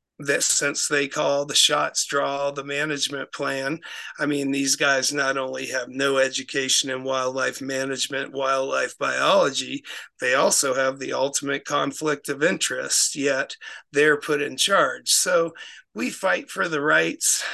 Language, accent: English, American